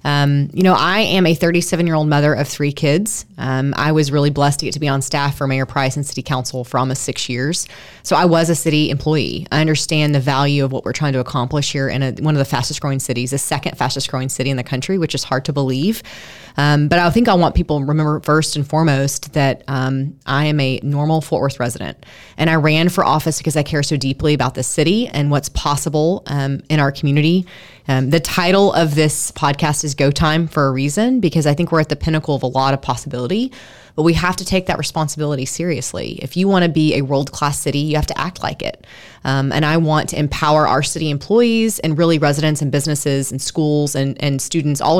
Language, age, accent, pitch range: English, 20-39, American, 135-160 Hz